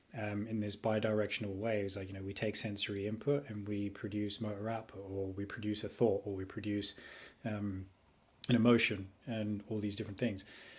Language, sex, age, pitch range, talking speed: English, male, 20-39, 105-115 Hz, 190 wpm